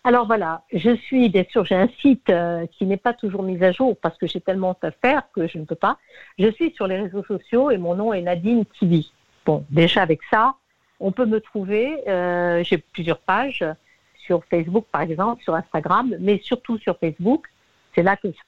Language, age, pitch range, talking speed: French, 60-79, 175-240 Hz, 215 wpm